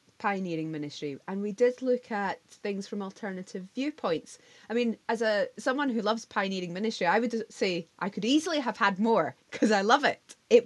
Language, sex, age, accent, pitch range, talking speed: English, female, 20-39, British, 185-230 Hz, 190 wpm